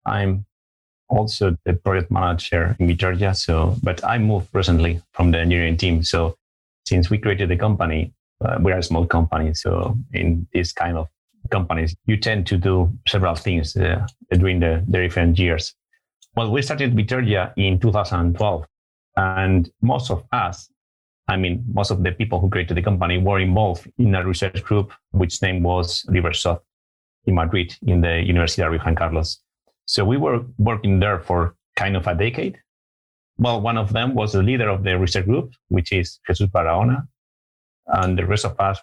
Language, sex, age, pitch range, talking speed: English, male, 30-49, 85-105 Hz, 175 wpm